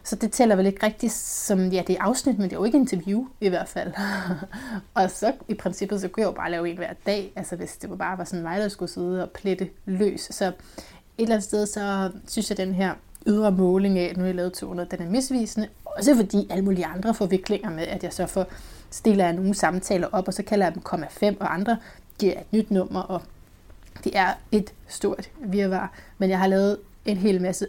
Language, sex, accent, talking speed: Danish, female, native, 245 wpm